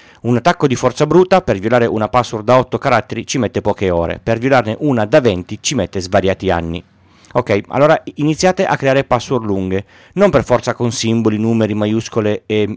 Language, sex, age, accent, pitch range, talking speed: Italian, male, 30-49, native, 100-140 Hz, 190 wpm